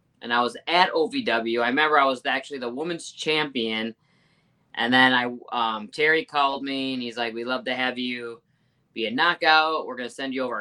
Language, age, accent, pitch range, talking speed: English, 20-39, American, 115-150 Hz, 205 wpm